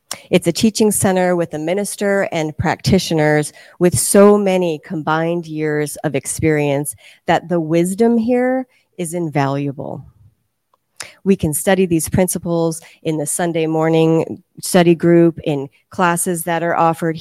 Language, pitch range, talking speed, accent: English, 155-190 Hz, 135 wpm, American